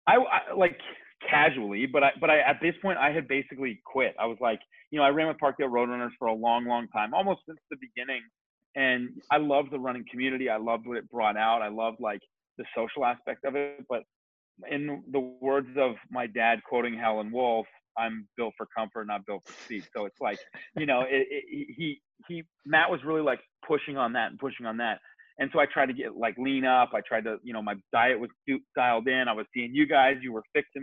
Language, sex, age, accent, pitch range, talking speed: English, male, 30-49, American, 115-150 Hz, 230 wpm